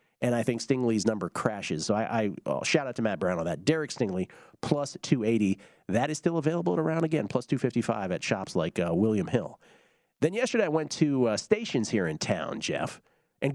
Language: English